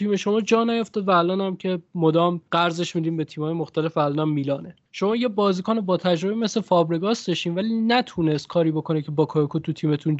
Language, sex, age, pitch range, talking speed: Persian, male, 20-39, 155-185 Hz, 175 wpm